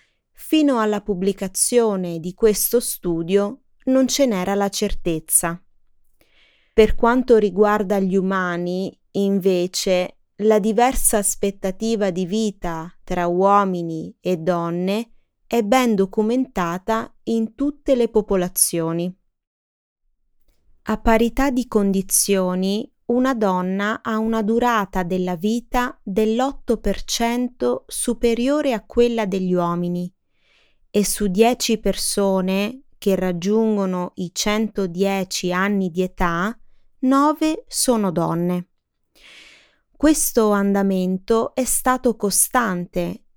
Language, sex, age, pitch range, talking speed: Italian, female, 30-49, 185-235 Hz, 95 wpm